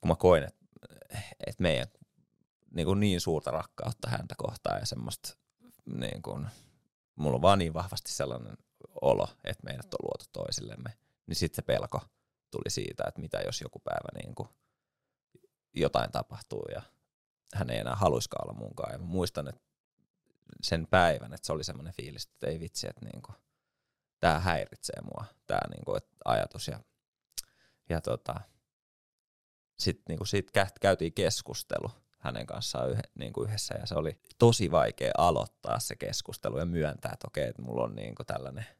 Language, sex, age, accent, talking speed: Finnish, male, 30-49, native, 145 wpm